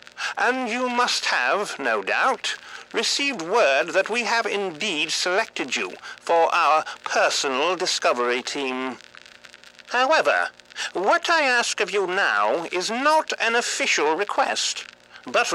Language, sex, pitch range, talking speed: English, male, 150-245 Hz, 125 wpm